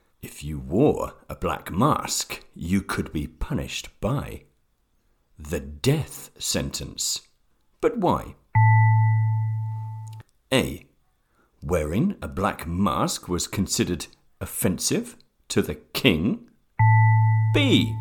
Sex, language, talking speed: male, English, 95 wpm